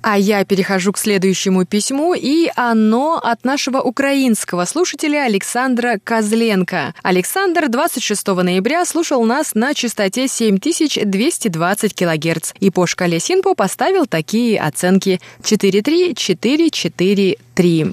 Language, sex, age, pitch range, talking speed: Russian, female, 20-39, 185-250 Hz, 105 wpm